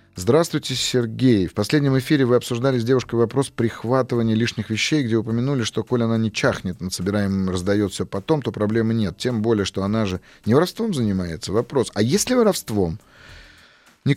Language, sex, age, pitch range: Russian, male, 30-49, 100-125 Hz